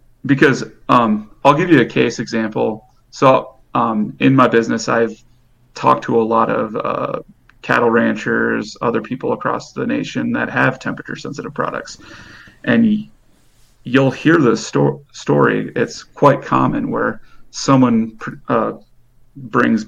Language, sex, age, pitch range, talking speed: English, male, 30-49, 115-140 Hz, 135 wpm